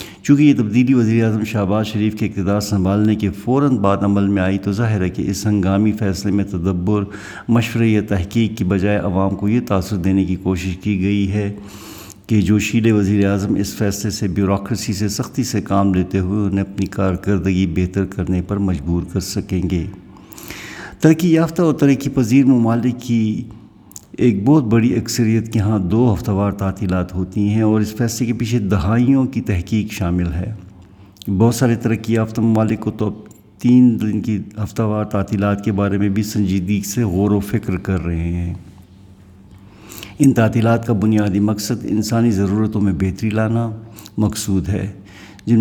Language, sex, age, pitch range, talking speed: Urdu, male, 60-79, 95-110 Hz, 170 wpm